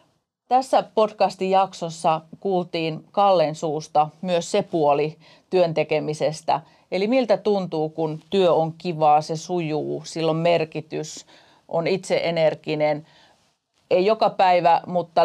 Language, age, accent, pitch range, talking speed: Finnish, 40-59, native, 155-185 Hz, 105 wpm